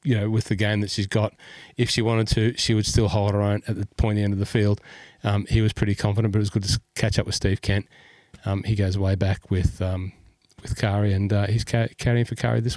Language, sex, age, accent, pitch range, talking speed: English, male, 30-49, Australian, 100-120 Hz, 270 wpm